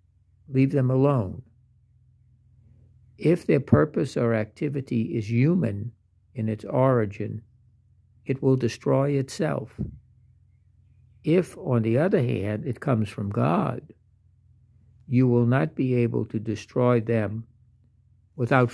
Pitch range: 110-125 Hz